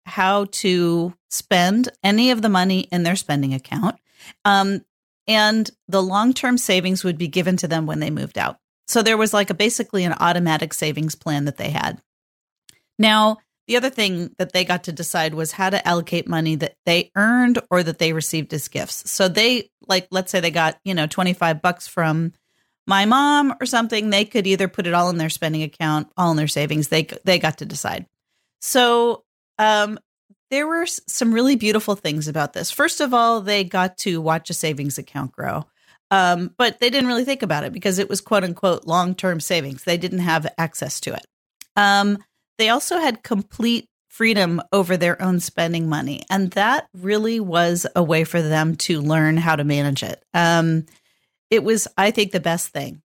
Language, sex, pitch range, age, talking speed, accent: English, female, 165-215 Hz, 40-59, 190 wpm, American